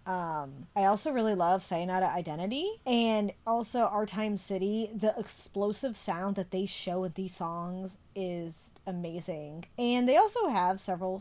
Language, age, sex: English, 20-39, female